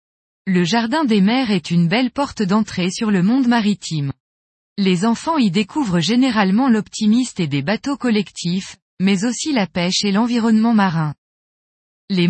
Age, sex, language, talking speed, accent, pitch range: 20-39, female, French, 150 wpm, French, 180-245 Hz